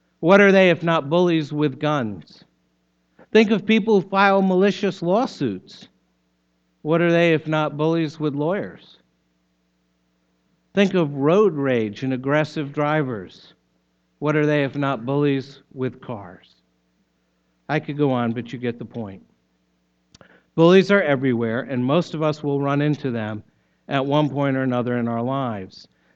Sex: male